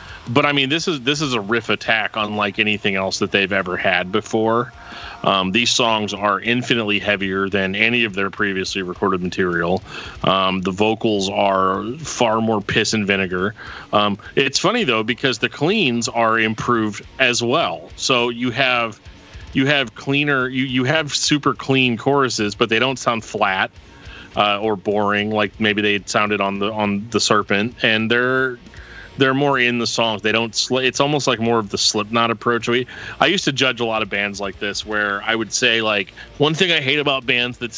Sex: male